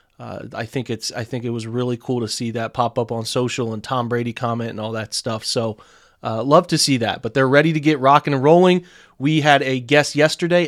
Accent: American